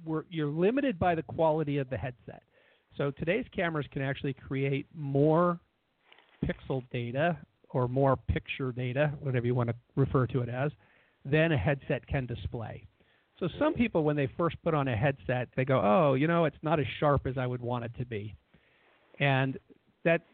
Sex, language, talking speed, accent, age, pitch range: male, English, 185 wpm, American, 50-69, 125-150 Hz